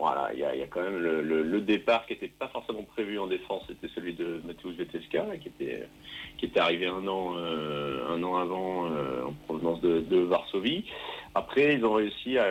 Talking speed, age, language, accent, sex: 220 wpm, 40-59, French, French, male